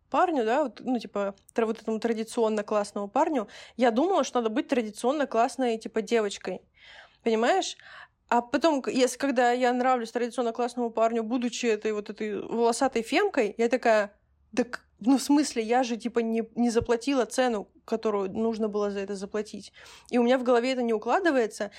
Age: 20-39